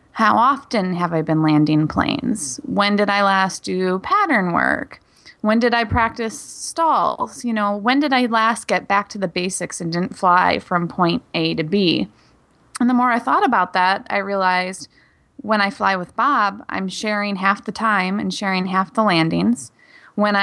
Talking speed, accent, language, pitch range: 185 wpm, American, English, 180-220 Hz